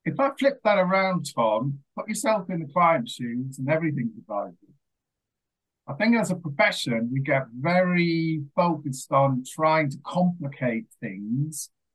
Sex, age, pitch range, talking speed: male, 50-69, 135-180 Hz, 145 wpm